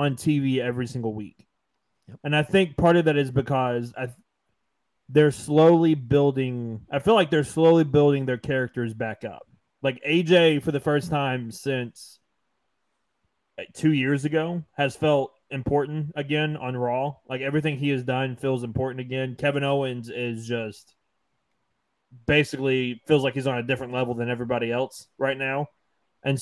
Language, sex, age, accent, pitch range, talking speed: English, male, 20-39, American, 125-150 Hz, 155 wpm